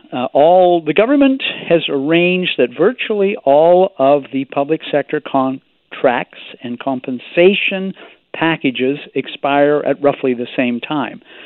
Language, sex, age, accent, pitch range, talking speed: English, male, 50-69, American, 130-210 Hz, 120 wpm